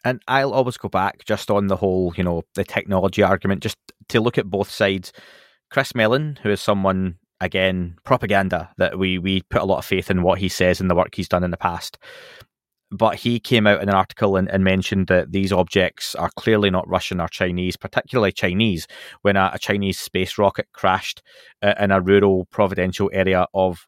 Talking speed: 205 wpm